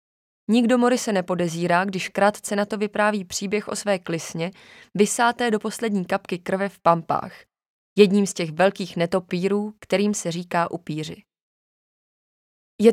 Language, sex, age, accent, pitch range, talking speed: Czech, female, 20-39, native, 175-210 Hz, 135 wpm